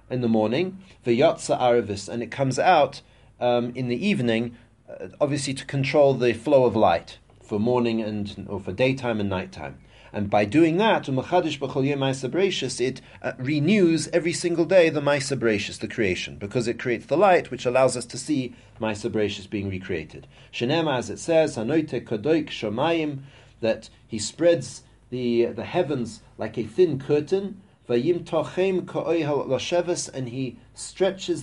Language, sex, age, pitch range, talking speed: English, male, 40-59, 115-155 Hz, 145 wpm